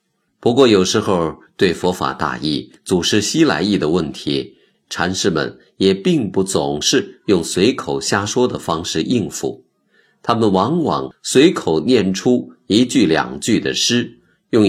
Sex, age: male, 50-69